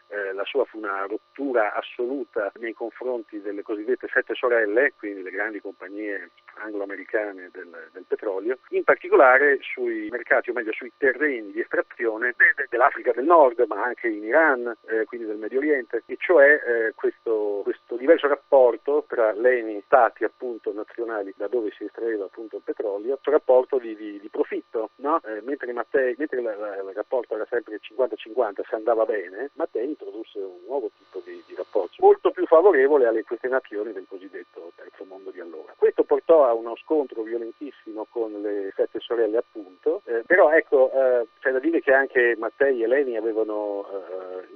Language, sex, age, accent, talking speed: Italian, male, 50-69, native, 175 wpm